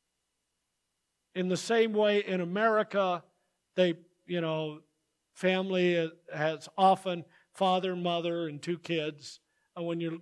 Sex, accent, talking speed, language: male, American, 115 wpm, English